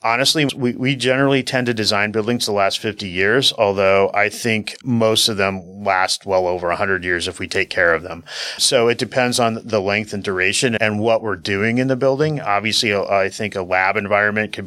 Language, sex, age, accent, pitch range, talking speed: English, male, 30-49, American, 95-120 Hz, 210 wpm